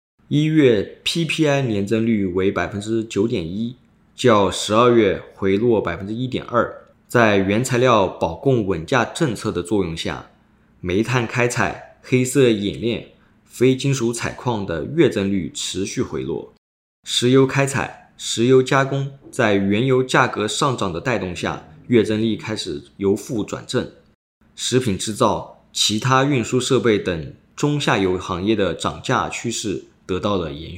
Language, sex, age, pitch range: Chinese, male, 20-39, 100-135 Hz